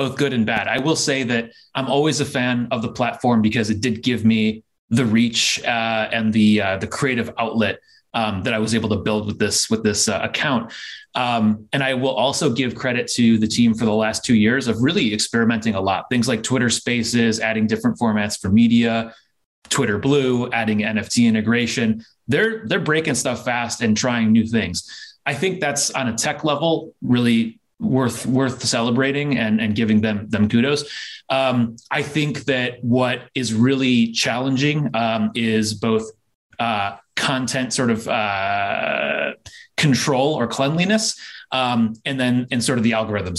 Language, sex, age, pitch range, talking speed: English, male, 30-49, 110-130 Hz, 175 wpm